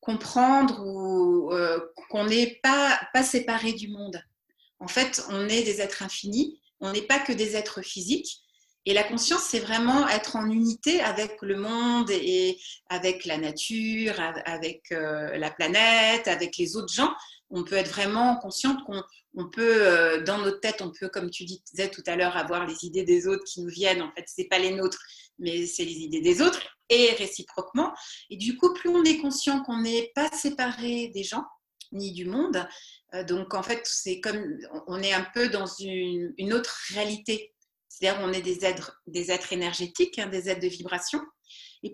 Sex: female